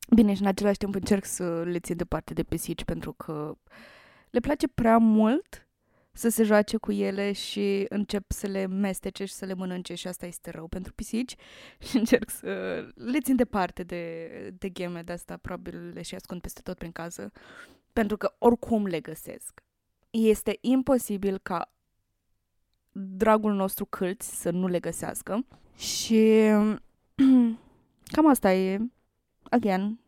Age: 20-39